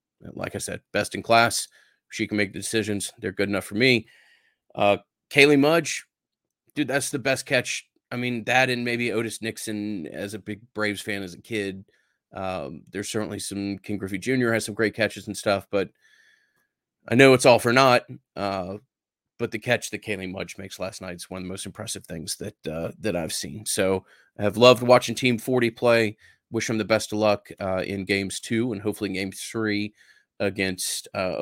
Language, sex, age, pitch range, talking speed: English, male, 30-49, 100-115 Hz, 200 wpm